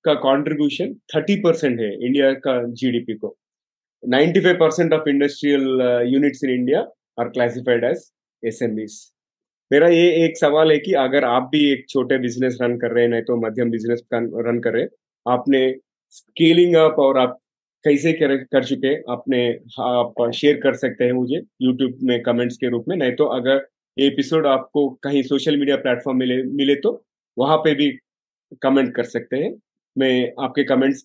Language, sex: Hindi, male